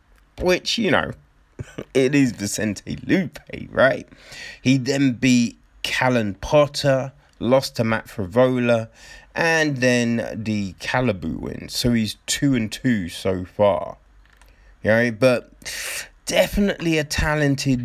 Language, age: English, 30-49